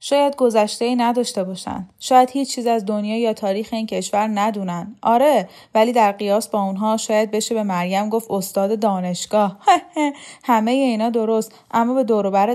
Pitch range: 200-240 Hz